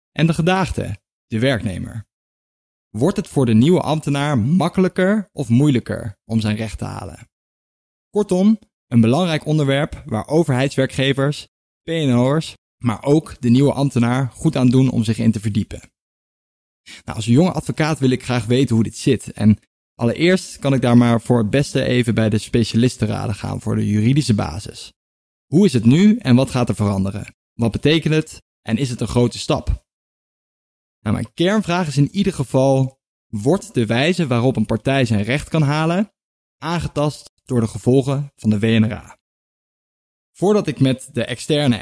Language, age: Dutch, 20-39